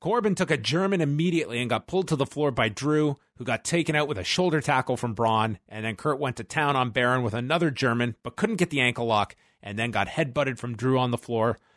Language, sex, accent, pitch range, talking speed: English, male, American, 120-165 Hz, 250 wpm